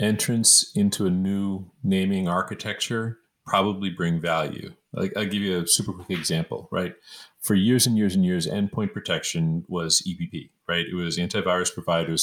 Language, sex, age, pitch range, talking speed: English, male, 40-59, 90-110 Hz, 160 wpm